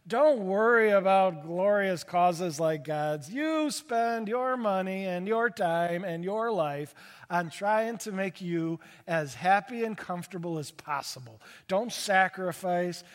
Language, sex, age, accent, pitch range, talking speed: English, male, 40-59, American, 165-225 Hz, 135 wpm